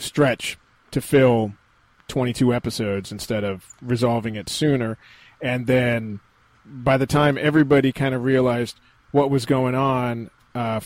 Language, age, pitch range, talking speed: English, 30-49, 110-135 Hz, 135 wpm